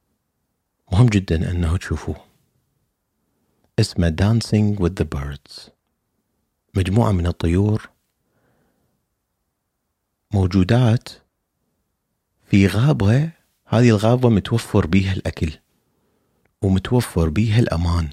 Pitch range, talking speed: 85-115 Hz, 75 wpm